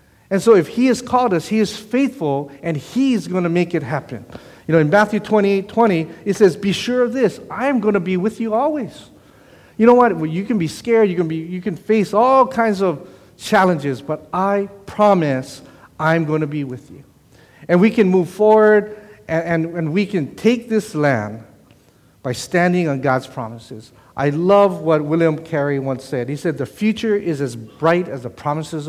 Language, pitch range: English, 140-195 Hz